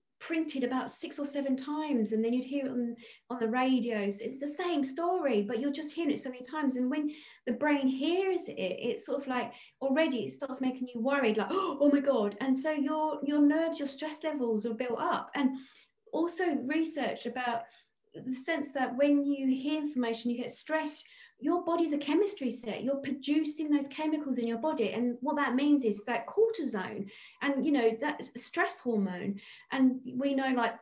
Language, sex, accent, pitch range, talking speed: English, female, British, 240-305 Hz, 195 wpm